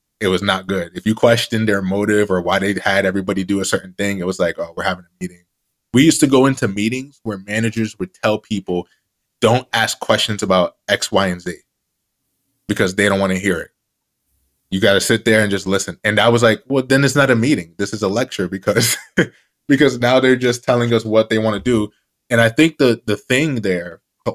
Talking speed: 230 wpm